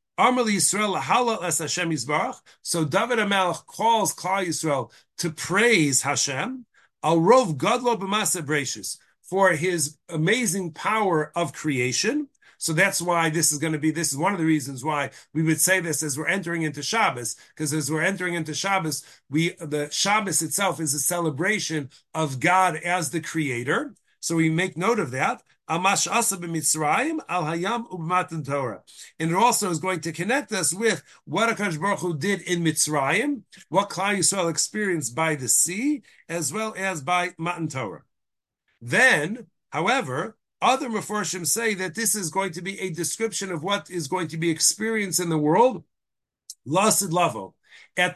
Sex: male